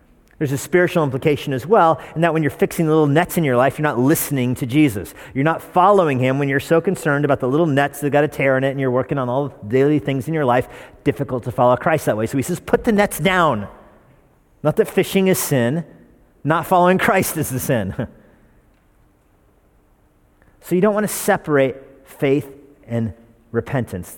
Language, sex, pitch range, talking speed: English, male, 120-160 Hz, 210 wpm